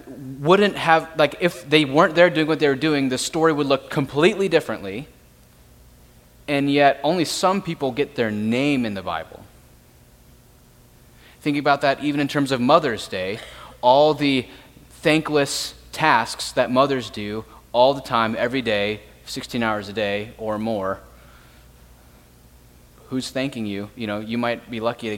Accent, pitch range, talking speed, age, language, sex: American, 110-145 Hz, 155 wpm, 30-49, English, male